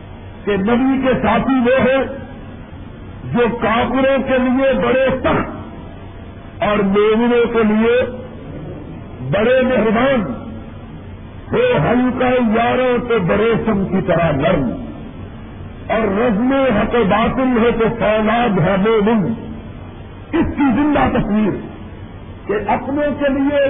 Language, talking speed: Urdu, 115 wpm